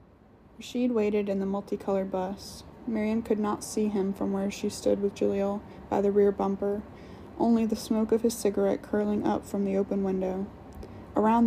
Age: 20-39